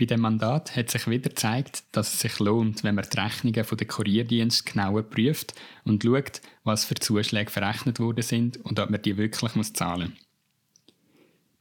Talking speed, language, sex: 180 wpm, German, male